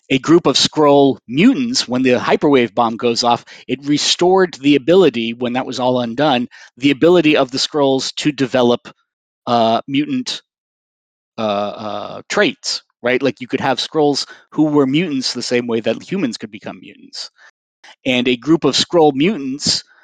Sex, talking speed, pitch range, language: male, 165 wpm, 120-150 Hz, English